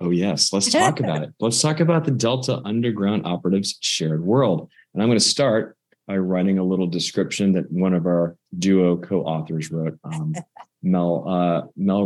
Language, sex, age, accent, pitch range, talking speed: English, male, 30-49, American, 85-105 Hz, 180 wpm